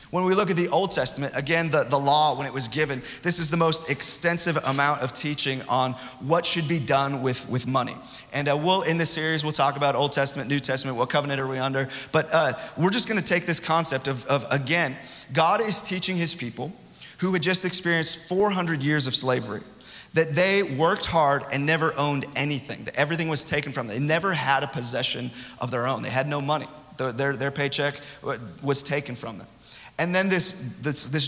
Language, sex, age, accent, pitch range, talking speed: English, male, 30-49, American, 135-170 Hz, 215 wpm